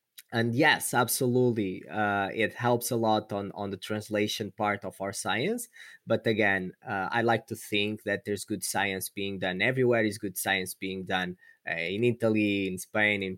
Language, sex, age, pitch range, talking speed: English, male, 20-39, 100-120 Hz, 185 wpm